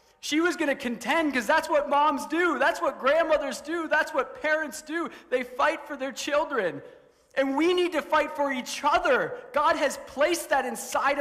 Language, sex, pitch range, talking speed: English, male, 170-265 Hz, 195 wpm